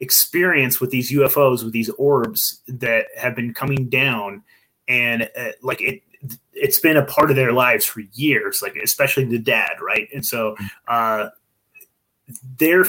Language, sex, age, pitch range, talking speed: English, male, 30-49, 120-155 Hz, 165 wpm